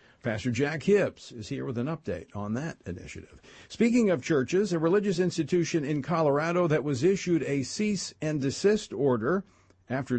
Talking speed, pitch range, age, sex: 165 wpm, 115-165 Hz, 50-69, male